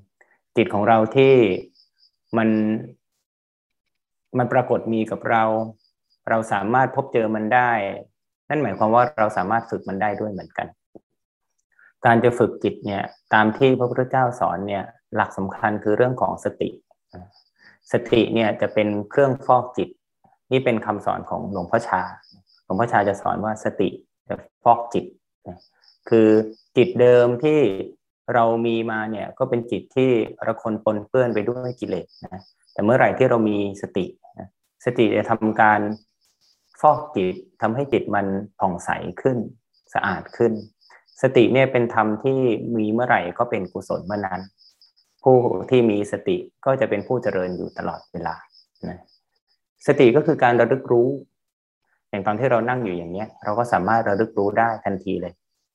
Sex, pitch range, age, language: male, 105-125 Hz, 20-39, Thai